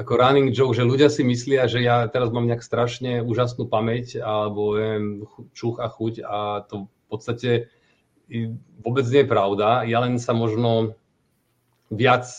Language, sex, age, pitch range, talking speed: Czech, male, 30-49, 110-125 Hz, 160 wpm